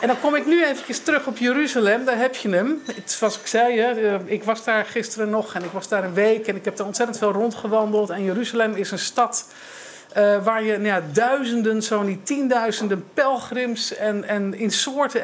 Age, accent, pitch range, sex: 50-69, Dutch, 200-230 Hz, male